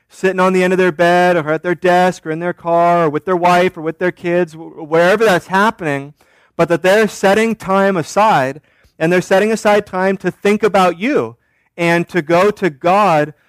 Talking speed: 205 wpm